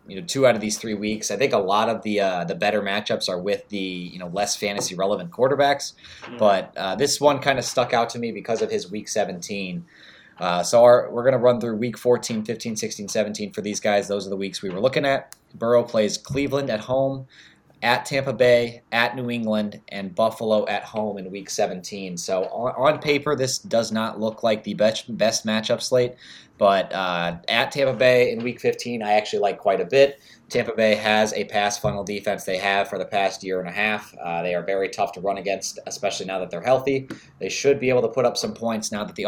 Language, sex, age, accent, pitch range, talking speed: English, male, 20-39, American, 100-120 Hz, 230 wpm